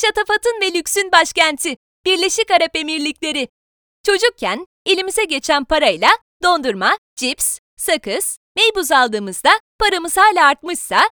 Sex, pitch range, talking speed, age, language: female, 305-395 Hz, 100 wpm, 30-49, Turkish